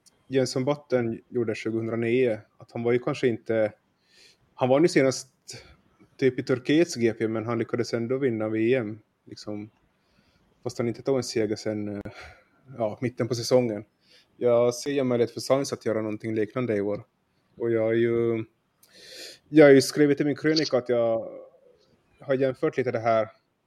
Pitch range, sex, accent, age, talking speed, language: 115-130 Hz, male, Finnish, 20-39, 165 wpm, Swedish